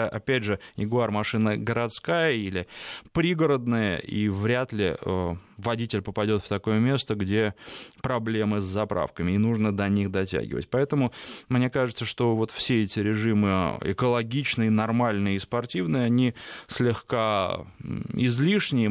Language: Russian